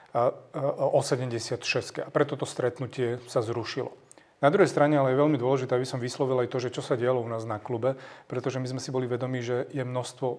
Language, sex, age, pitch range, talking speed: Slovak, male, 30-49, 120-140 Hz, 225 wpm